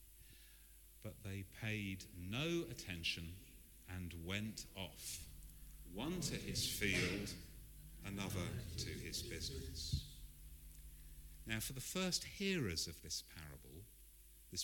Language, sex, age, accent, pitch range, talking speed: English, male, 50-69, British, 75-120 Hz, 100 wpm